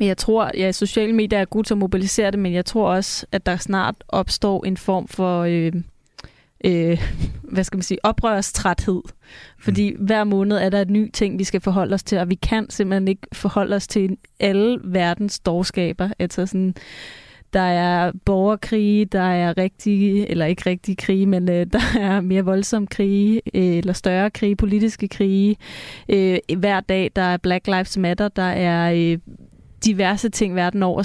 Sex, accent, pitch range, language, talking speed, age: female, native, 185-210 Hz, Danish, 180 wpm, 20-39